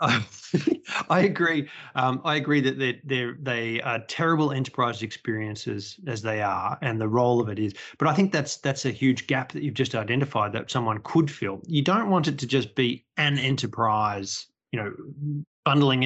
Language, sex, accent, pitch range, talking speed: English, male, Australian, 110-135 Hz, 185 wpm